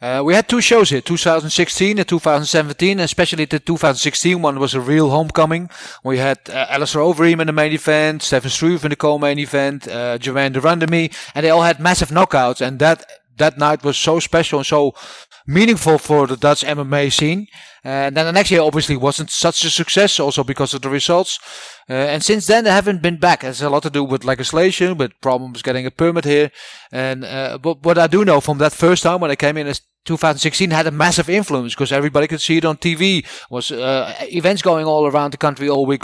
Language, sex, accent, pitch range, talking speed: English, male, Dutch, 140-170 Hz, 220 wpm